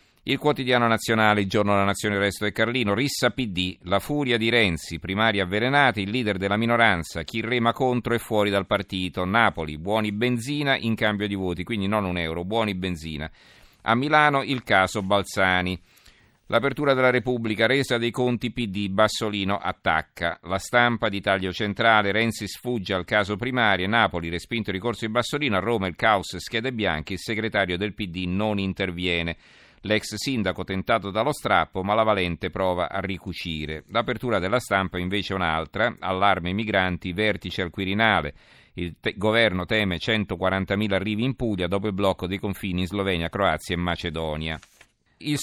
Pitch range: 95-115 Hz